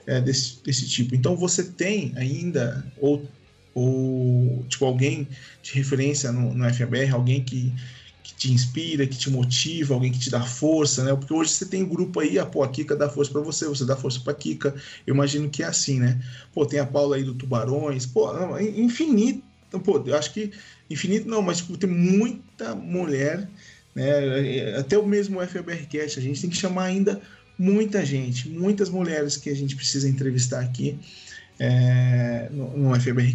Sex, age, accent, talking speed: male, 20-39, Brazilian, 190 wpm